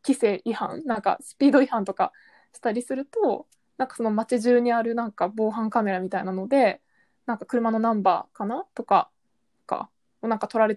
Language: Japanese